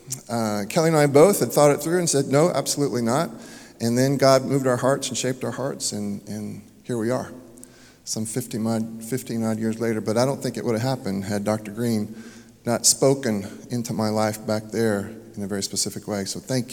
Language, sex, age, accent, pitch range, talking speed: English, male, 40-59, American, 110-135 Hz, 215 wpm